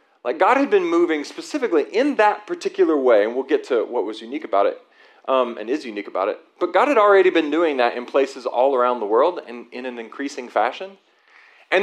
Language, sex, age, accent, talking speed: English, male, 40-59, American, 225 wpm